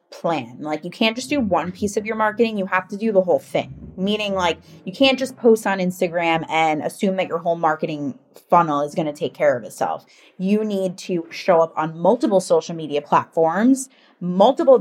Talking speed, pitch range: 205 wpm, 165-210 Hz